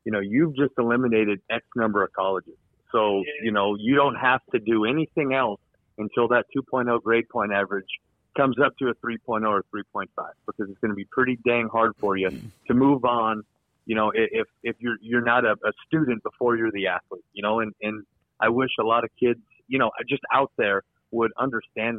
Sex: male